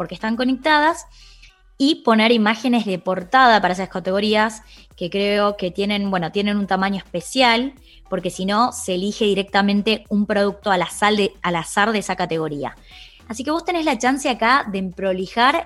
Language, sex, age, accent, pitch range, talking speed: Spanish, female, 20-39, Argentinian, 185-260 Hz, 175 wpm